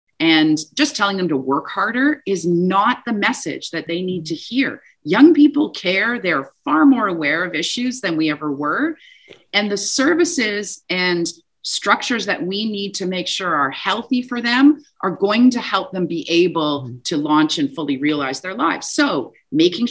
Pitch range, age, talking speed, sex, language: 165-265 Hz, 40-59, 180 wpm, female, English